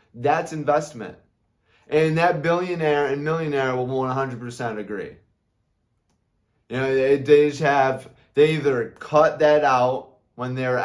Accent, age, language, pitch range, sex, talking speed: American, 20-39, English, 115-150 Hz, male, 125 wpm